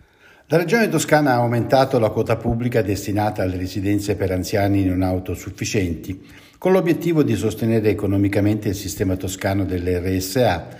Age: 60-79